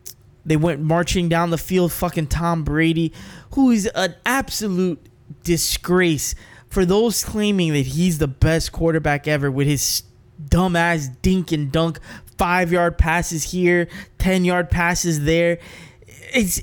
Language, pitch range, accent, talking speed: English, 135-175 Hz, American, 140 wpm